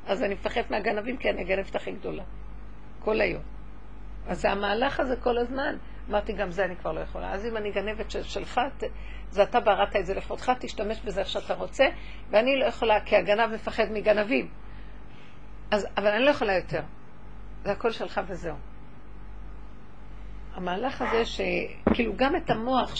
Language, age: Hebrew, 50-69